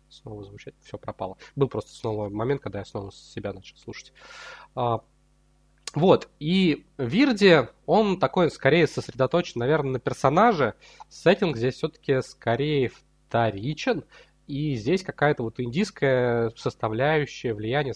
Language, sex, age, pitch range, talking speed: Russian, male, 20-39, 110-140 Hz, 120 wpm